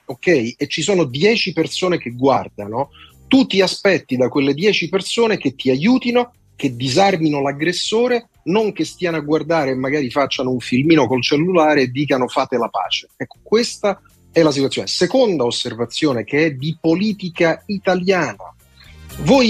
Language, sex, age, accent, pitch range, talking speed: Italian, male, 40-59, native, 130-200 Hz, 155 wpm